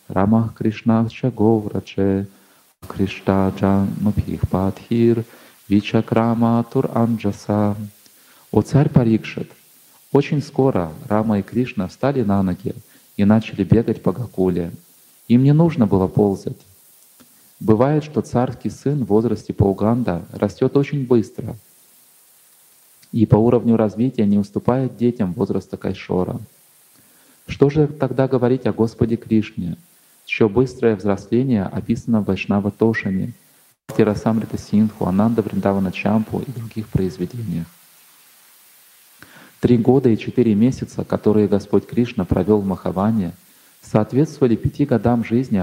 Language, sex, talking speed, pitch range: English, male, 110 wpm, 100-120 Hz